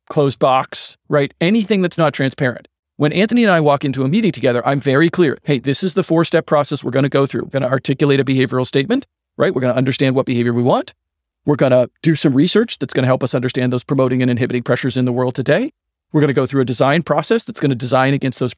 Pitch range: 130-165 Hz